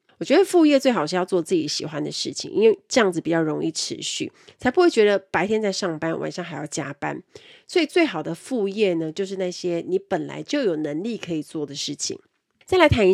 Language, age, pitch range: Chinese, 30-49, 165-225 Hz